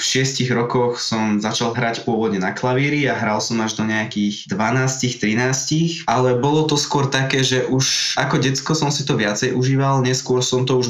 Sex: male